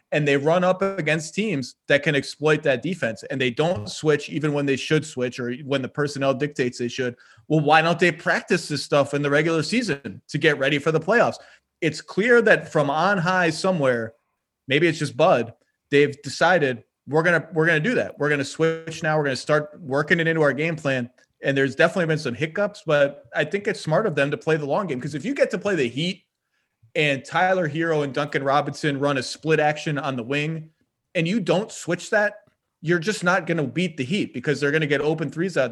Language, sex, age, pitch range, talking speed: English, male, 30-49, 140-165 Hz, 235 wpm